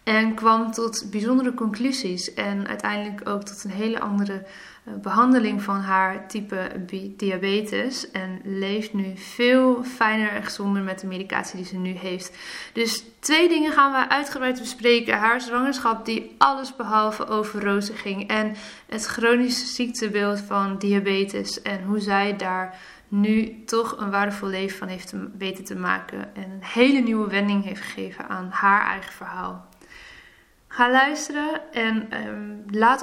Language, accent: Dutch, Dutch